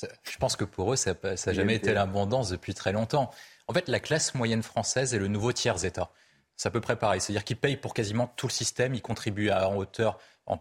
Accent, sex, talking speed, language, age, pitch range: French, male, 230 wpm, French, 20-39, 95-115 Hz